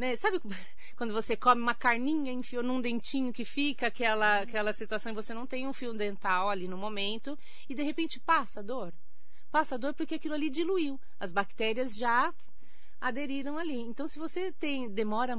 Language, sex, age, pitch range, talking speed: Portuguese, female, 30-49, 210-265 Hz, 170 wpm